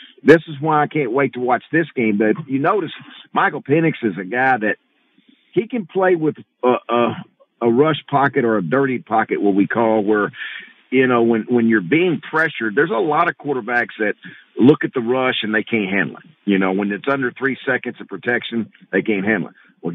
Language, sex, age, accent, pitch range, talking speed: English, male, 50-69, American, 115-155 Hz, 215 wpm